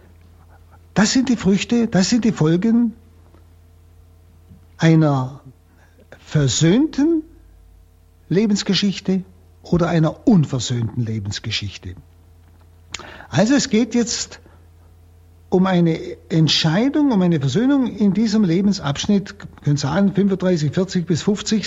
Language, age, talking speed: German, 60-79, 95 wpm